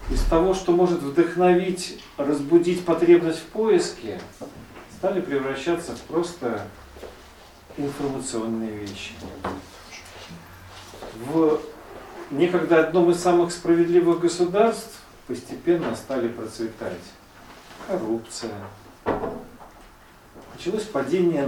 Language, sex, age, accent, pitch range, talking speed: Russian, male, 40-59, native, 110-175 Hz, 80 wpm